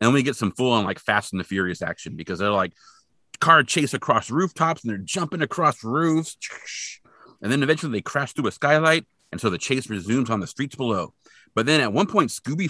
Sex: male